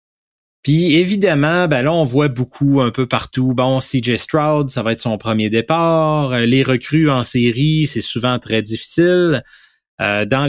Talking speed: 165 wpm